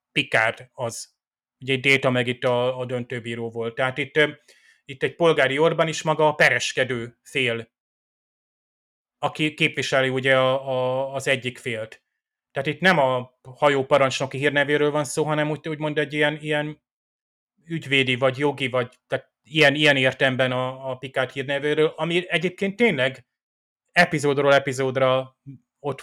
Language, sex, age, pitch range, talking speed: Hungarian, male, 30-49, 125-145 Hz, 140 wpm